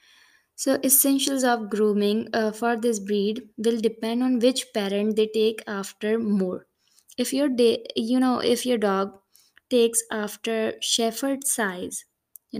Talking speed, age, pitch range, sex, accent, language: 150 wpm, 20-39, 210-240 Hz, female, Indian, English